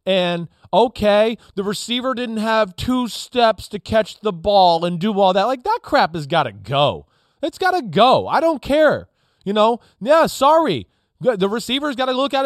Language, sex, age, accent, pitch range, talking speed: English, male, 30-49, American, 170-250 Hz, 195 wpm